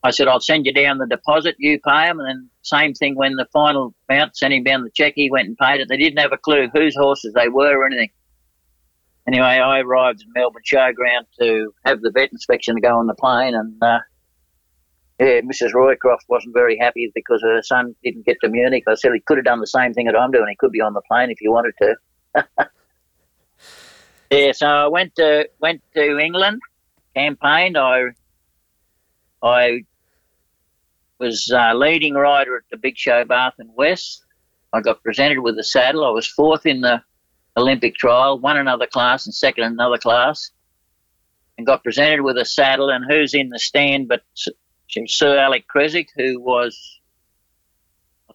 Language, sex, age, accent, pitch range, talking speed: English, male, 60-79, Australian, 110-145 Hz, 190 wpm